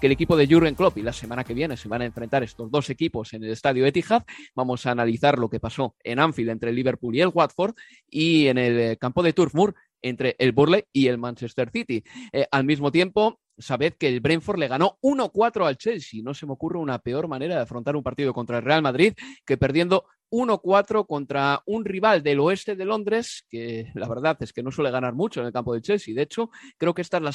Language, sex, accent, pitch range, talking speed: Spanish, male, Spanish, 125-185 Hz, 235 wpm